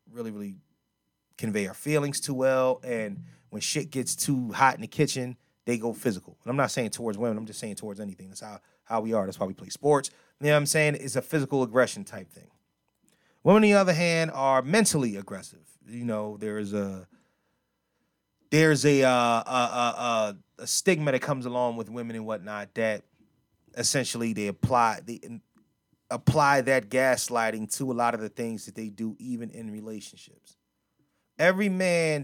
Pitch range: 110-145 Hz